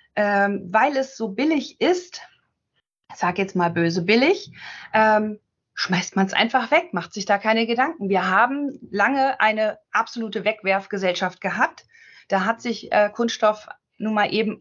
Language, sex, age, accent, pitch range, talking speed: German, female, 30-49, German, 205-260 Hz, 155 wpm